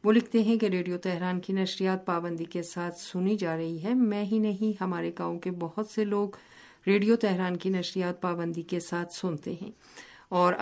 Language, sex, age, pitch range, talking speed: Urdu, female, 50-69, 170-200 Hz, 190 wpm